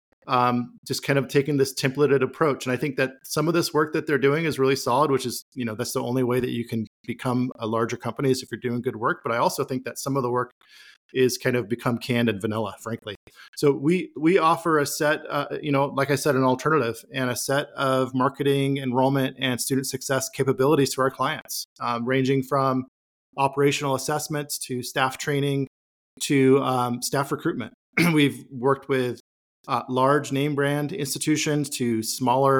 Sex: male